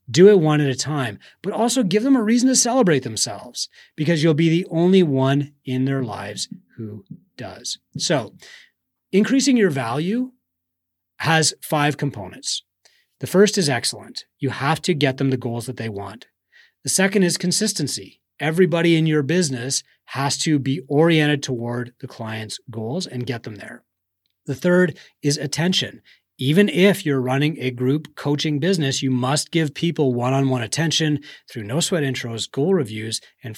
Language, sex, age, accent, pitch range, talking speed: English, male, 30-49, American, 125-170 Hz, 165 wpm